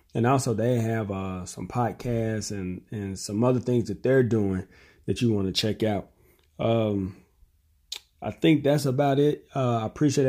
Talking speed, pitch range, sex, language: 175 wpm, 100-125 Hz, male, English